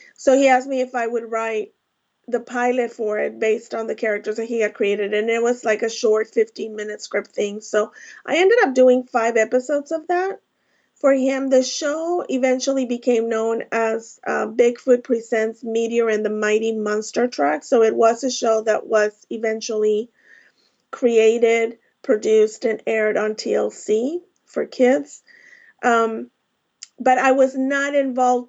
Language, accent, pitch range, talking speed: English, American, 225-265 Hz, 160 wpm